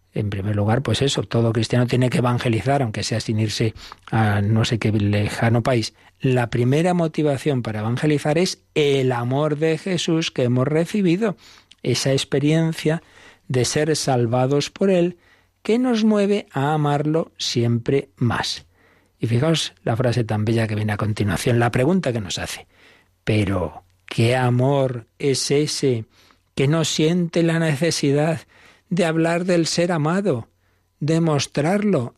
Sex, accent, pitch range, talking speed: male, Spanish, 110-150 Hz, 145 wpm